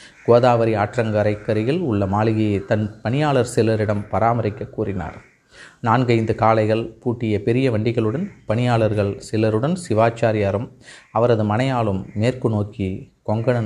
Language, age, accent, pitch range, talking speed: Tamil, 30-49, native, 110-125 Hz, 95 wpm